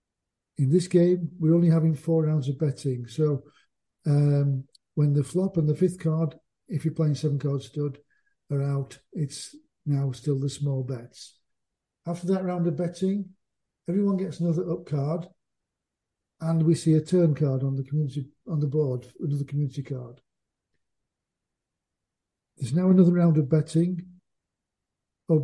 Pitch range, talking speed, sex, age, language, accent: 140-170 Hz, 155 wpm, male, 50-69, English, British